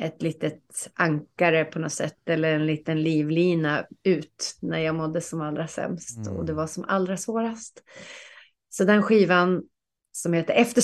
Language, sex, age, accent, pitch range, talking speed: Swedish, female, 30-49, native, 160-200 Hz, 160 wpm